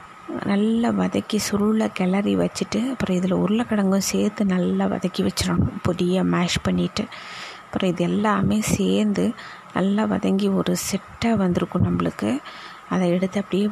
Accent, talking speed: native, 120 wpm